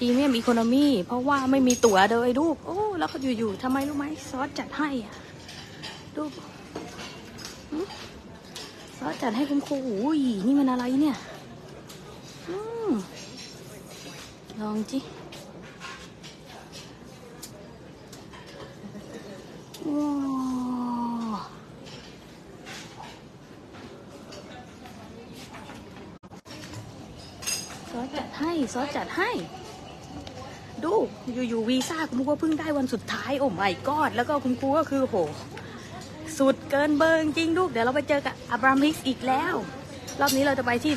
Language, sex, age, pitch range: English, female, 20-39, 235-290 Hz